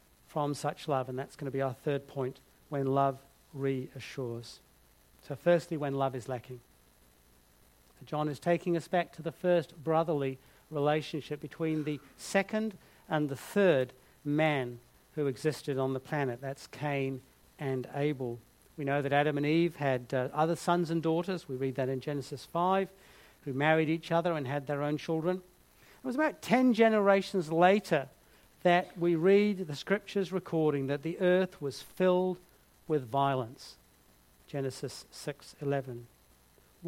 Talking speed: 155 wpm